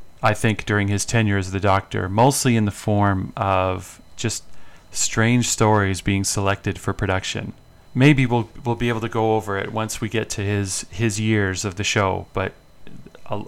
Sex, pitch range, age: male, 95-110 Hz, 30-49